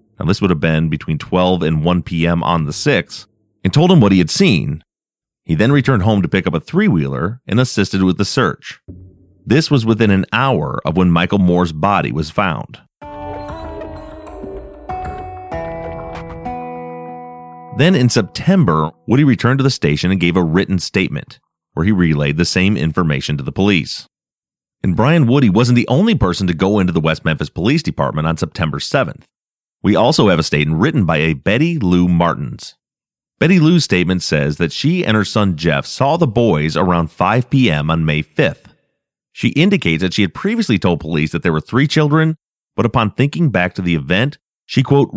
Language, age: English, 30-49